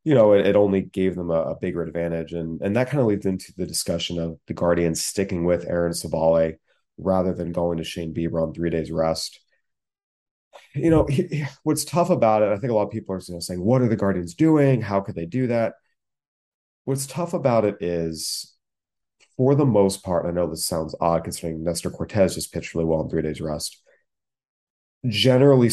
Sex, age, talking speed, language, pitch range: male, 30-49, 215 wpm, English, 85-100 Hz